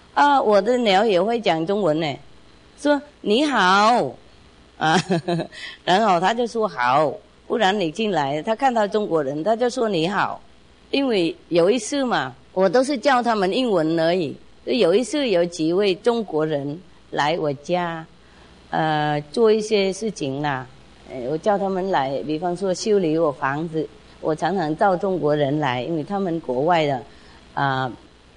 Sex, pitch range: female, 150-210 Hz